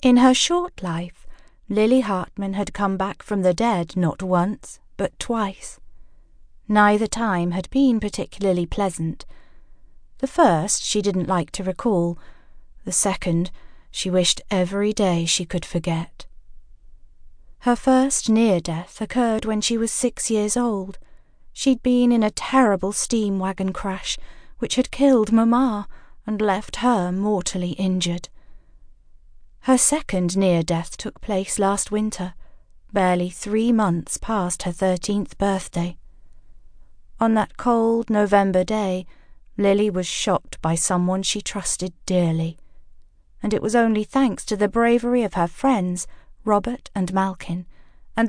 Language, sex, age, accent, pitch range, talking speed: English, female, 40-59, British, 175-225 Hz, 130 wpm